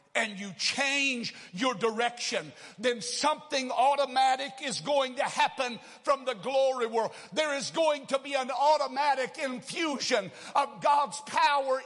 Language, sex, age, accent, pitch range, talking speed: English, male, 60-79, American, 195-295 Hz, 135 wpm